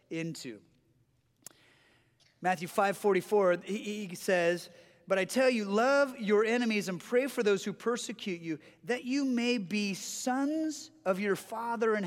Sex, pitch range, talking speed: male, 180-250 Hz, 145 wpm